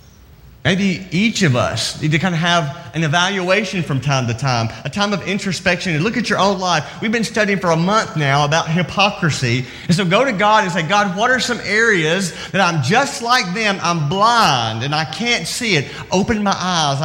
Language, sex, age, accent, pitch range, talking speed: English, male, 40-59, American, 140-200 Hz, 215 wpm